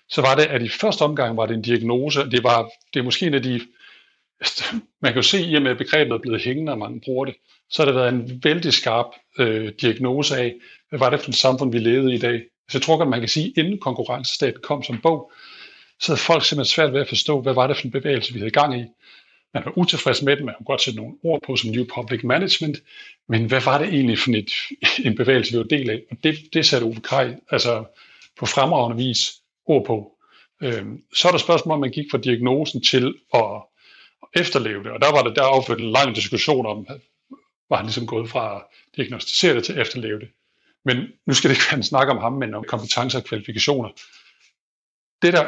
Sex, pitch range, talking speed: male, 115-145 Hz, 225 wpm